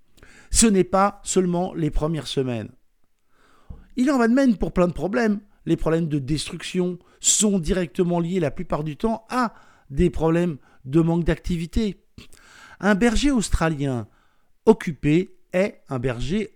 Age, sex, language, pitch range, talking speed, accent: 50-69, male, French, 150-210 Hz, 145 wpm, French